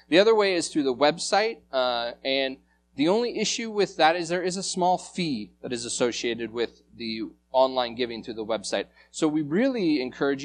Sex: male